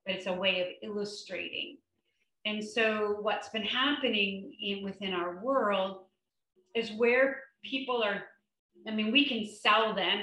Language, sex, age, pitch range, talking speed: English, female, 40-59, 190-215 Hz, 145 wpm